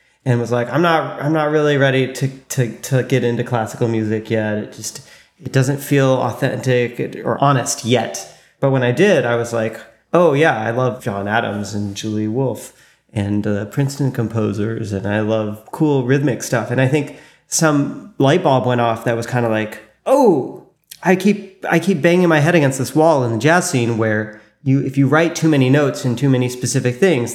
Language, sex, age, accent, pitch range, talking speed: English, male, 30-49, American, 115-135 Hz, 205 wpm